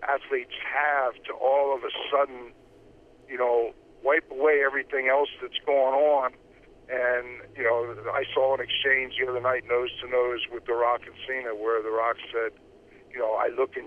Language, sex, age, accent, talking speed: English, male, 50-69, American, 185 wpm